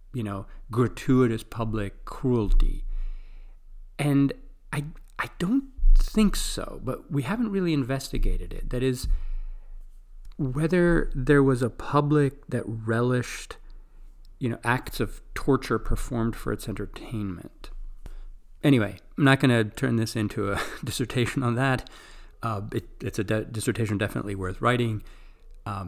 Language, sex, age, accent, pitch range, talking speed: English, male, 40-59, American, 95-130 Hz, 130 wpm